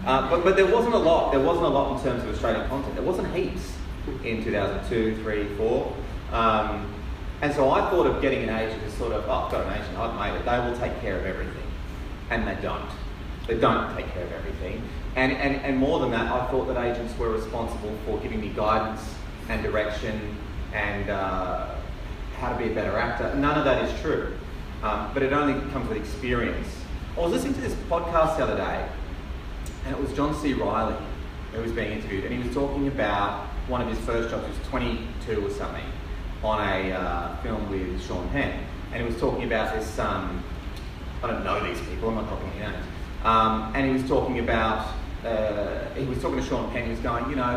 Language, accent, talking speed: English, Australian, 215 wpm